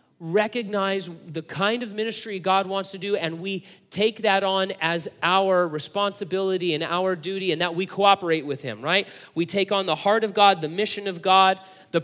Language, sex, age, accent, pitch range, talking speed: English, male, 30-49, American, 175-215 Hz, 195 wpm